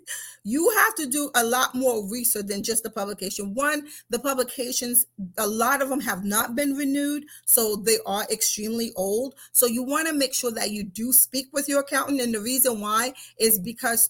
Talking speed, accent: 200 wpm, American